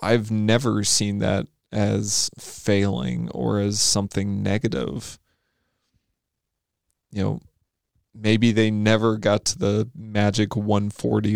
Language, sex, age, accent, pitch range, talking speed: English, male, 20-39, American, 100-110 Hz, 105 wpm